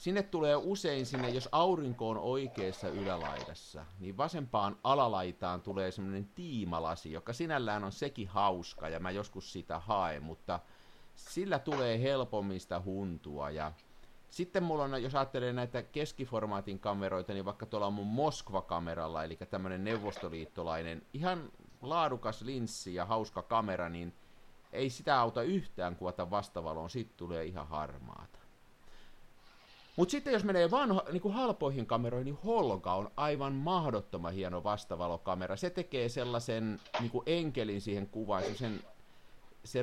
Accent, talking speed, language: native, 140 wpm, Finnish